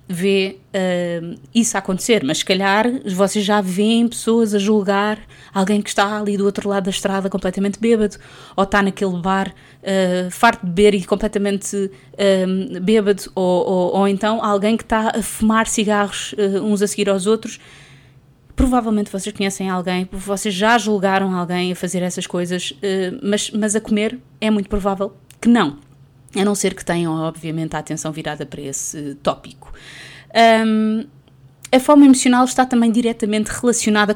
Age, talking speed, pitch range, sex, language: 20-39, 155 wpm, 175-215 Hz, female, Portuguese